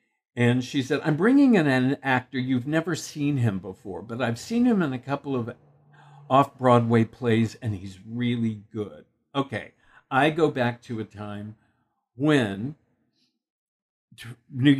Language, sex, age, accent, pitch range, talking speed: English, male, 60-79, American, 115-145 Hz, 145 wpm